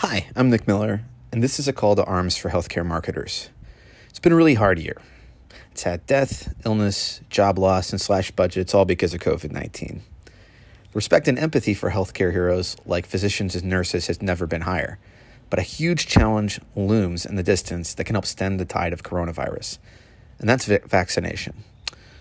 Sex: male